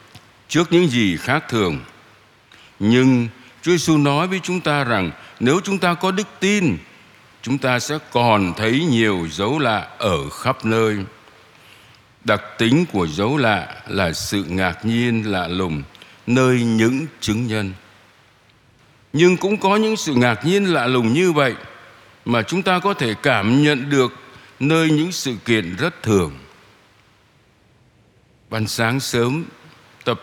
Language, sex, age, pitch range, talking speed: Vietnamese, male, 60-79, 105-140 Hz, 145 wpm